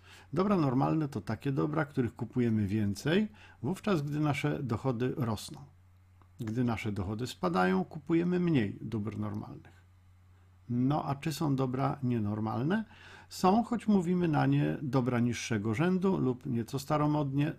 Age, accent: 50-69, native